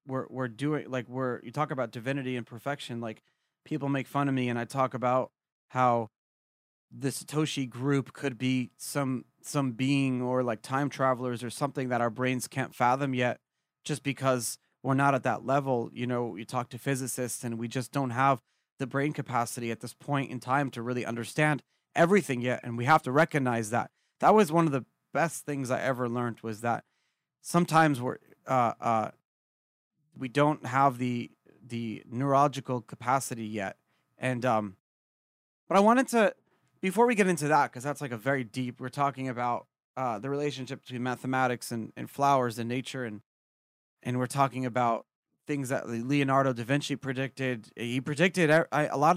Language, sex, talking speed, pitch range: English, male, 185 wpm, 125-145 Hz